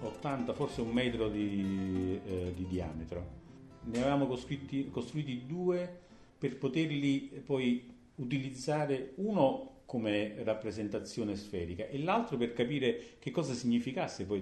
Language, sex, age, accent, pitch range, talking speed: Italian, male, 50-69, native, 90-120 Hz, 120 wpm